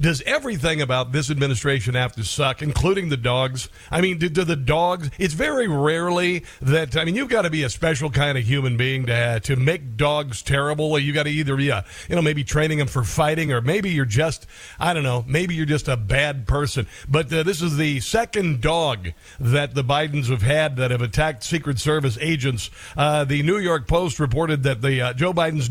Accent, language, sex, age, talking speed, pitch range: American, English, male, 50-69, 220 wpm, 130-165 Hz